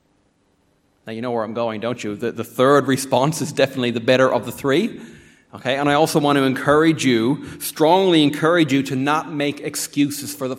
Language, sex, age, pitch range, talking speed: English, male, 30-49, 110-145 Hz, 205 wpm